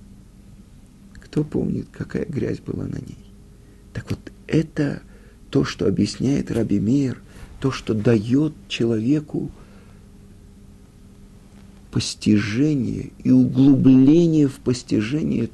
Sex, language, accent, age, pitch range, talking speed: male, Russian, native, 50-69, 100-145 Hz, 90 wpm